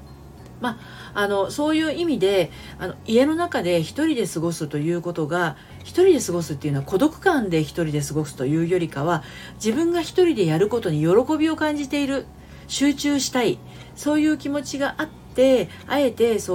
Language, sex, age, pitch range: Japanese, female, 40-59, 155-250 Hz